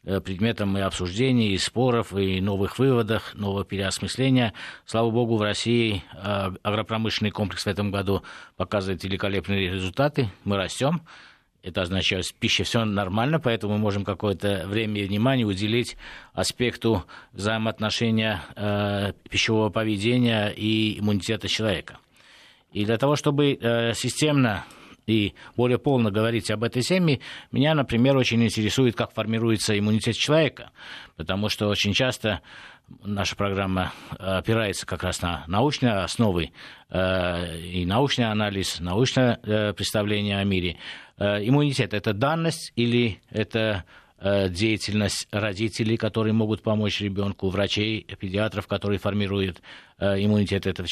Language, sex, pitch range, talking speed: Russian, male, 100-115 Hz, 120 wpm